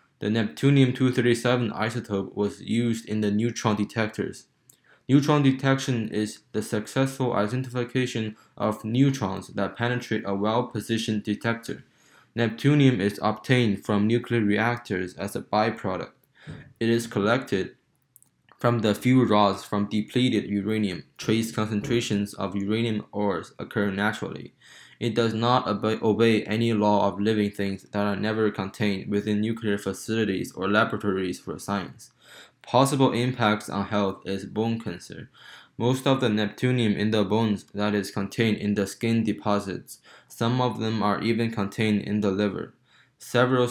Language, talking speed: English, 135 wpm